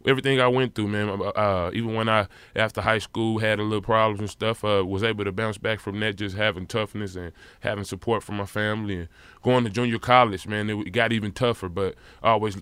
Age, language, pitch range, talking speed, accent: 20-39, English, 95-110 Hz, 230 wpm, American